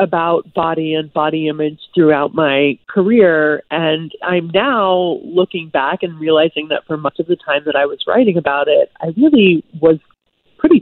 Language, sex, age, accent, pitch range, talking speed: English, female, 30-49, American, 150-185 Hz, 170 wpm